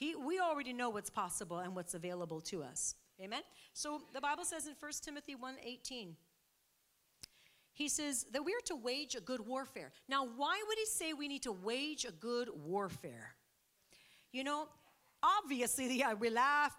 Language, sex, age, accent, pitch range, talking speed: English, female, 40-59, American, 205-290 Hz, 165 wpm